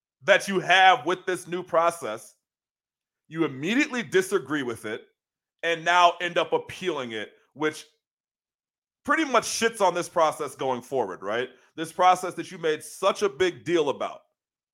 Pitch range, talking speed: 130-185 Hz, 155 wpm